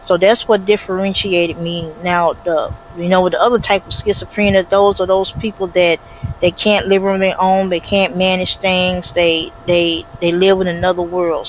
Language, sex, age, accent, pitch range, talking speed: English, female, 20-39, American, 175-200 Hz, 195 wpm